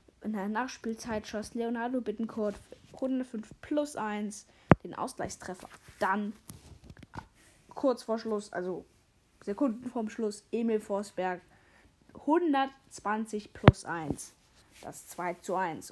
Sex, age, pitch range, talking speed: female, 10-29, 200-235 Hz, 105 wpm